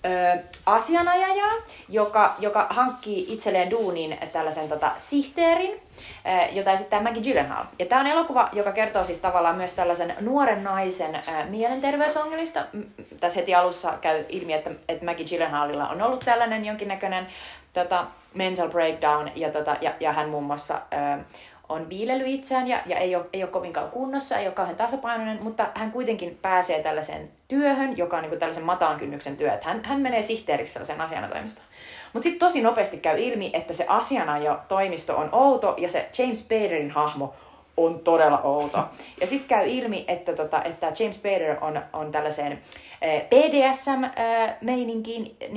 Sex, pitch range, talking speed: female, 165-235 Hz, 160 wpm